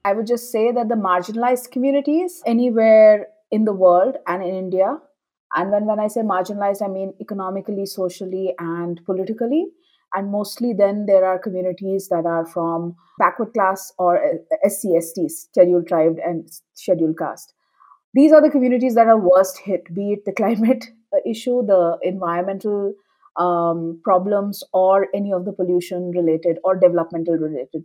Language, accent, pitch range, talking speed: English, Indian, 185-240 Hz, 145 wpm